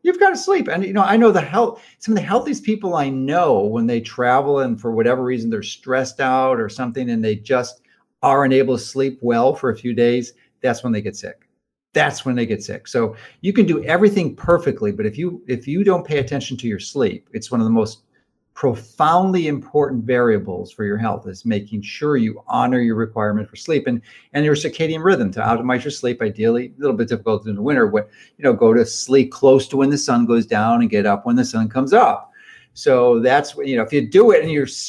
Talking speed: 235 wpm